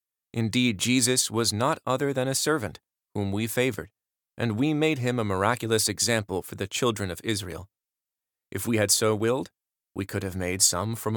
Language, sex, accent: English, male, American